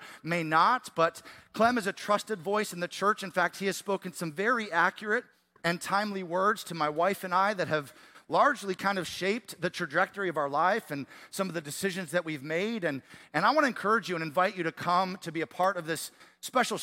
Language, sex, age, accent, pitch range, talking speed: English, male, 40-59, American, 165-205 Hz, 230 wpm